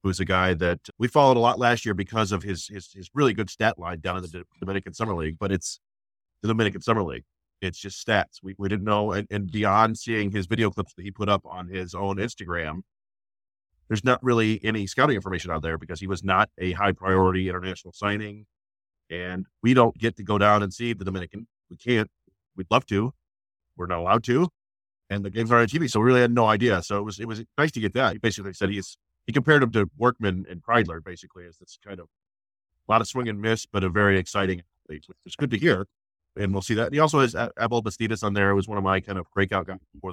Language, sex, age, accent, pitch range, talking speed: English, male, 30-49, American, 90-110 Hz, 240 wpm